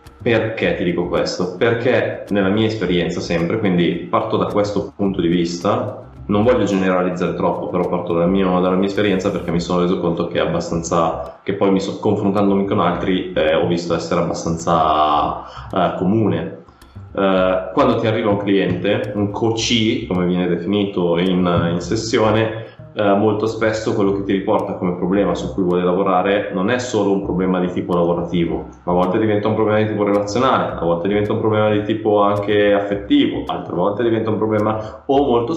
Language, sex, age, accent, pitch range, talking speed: Italian, male, 20-39, native, 90-110 Hz, 180 wpm